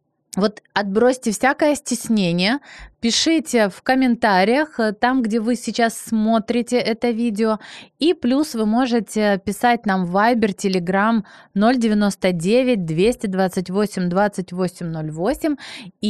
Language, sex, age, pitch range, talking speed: Ukrainian, female, 20-39, 185-240 Hz, 90 wpm